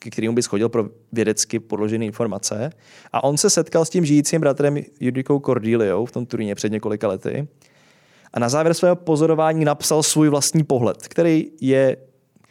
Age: 20-39